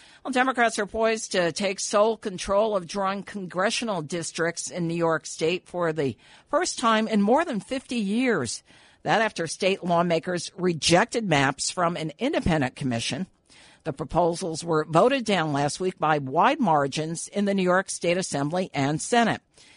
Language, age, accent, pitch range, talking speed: English, 50-69, American, 155-210 Hz, 160 wpm